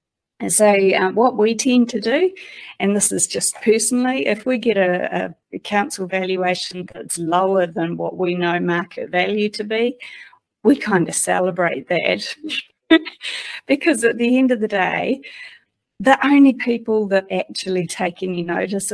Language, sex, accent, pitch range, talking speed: English, female, Australian, 175-215 Hz, 155 wpm